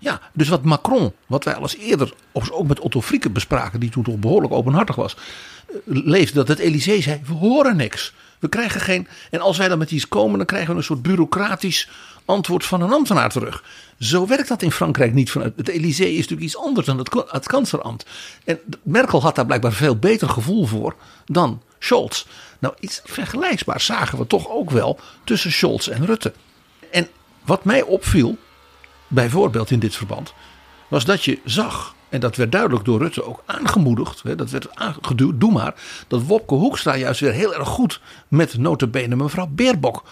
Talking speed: 185 wpm